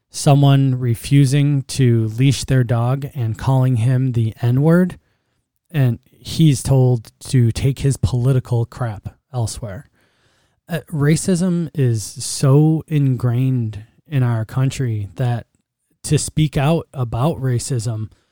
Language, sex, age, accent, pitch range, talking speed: English, male, 20-39, American, 115-140 Hz, 110 wpm